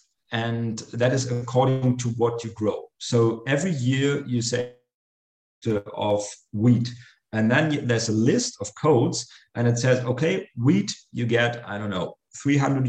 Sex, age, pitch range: male, 40-59, 110-130 Hz